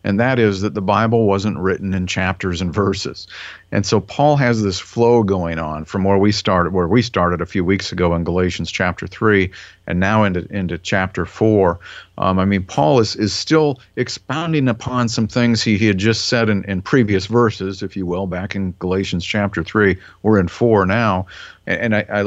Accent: American